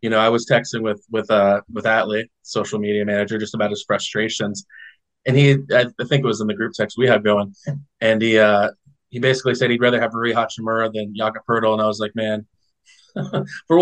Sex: male